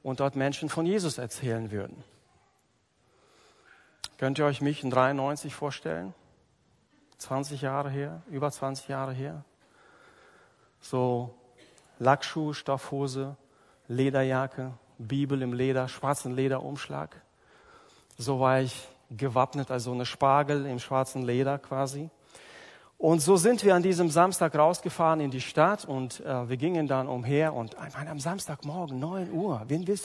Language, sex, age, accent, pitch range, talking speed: German, male, 40-59, German, 130-160 Hz, 135 wpm